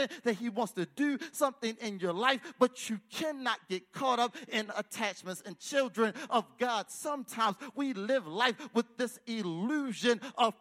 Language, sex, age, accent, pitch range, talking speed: English, male, 40-59, American, 220-270 Hz, 165 wpm